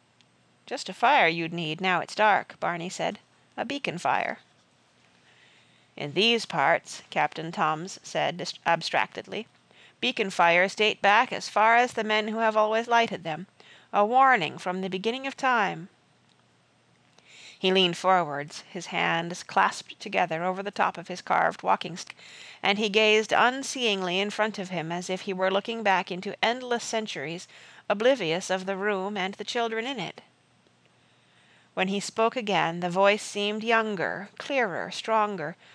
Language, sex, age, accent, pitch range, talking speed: English, female, 40-59, American, 175-220 Hz, 150 wpm